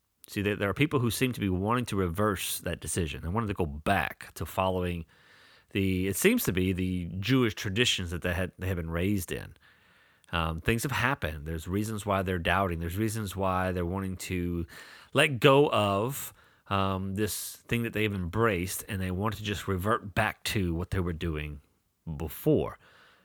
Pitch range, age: 90-115 Hz, 30-49